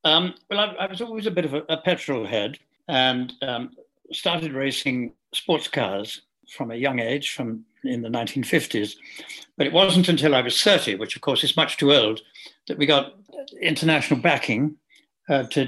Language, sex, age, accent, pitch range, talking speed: English, male, 60-79, British, 125-155 Hz, 185 wpm